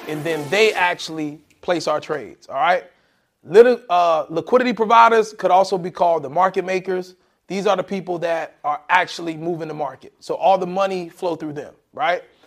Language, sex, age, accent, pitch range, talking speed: English, male, 30-49, American, 155-195 Hz, 185 wpm